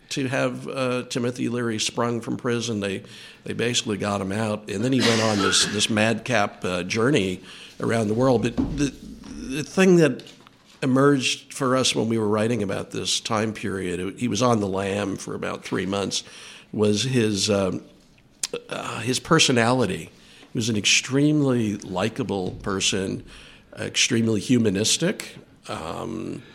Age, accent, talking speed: 60-79, American, 155 wpm